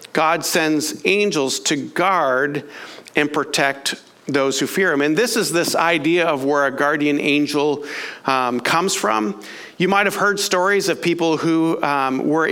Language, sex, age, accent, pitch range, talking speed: English, male, 50-69, American, 135-175 Hz, 165 wpm